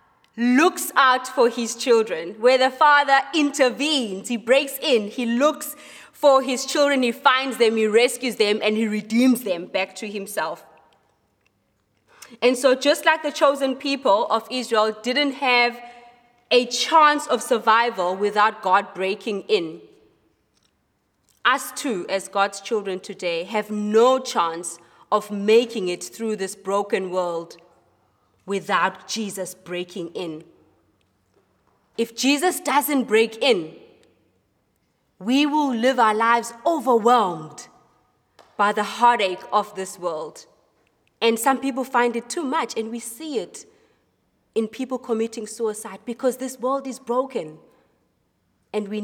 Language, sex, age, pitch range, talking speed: English, female, 20-39, 205-260 Hz, 130 wpm